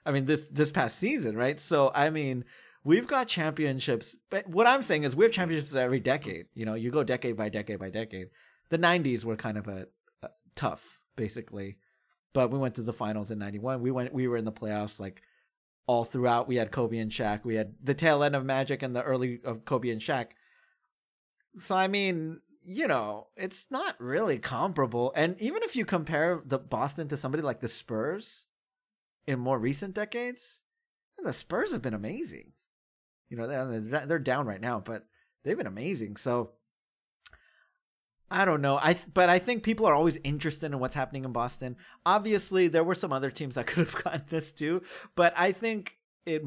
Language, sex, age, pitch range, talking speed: English, male, 30-49, 115-165 Hz, 200 wpm